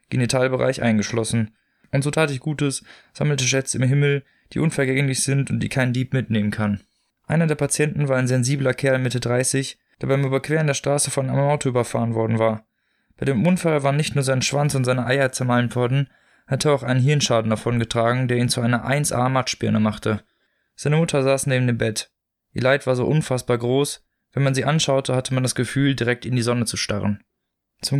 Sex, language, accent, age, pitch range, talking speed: male, German, German, 20-39, 120-140 Hz, 200 wpm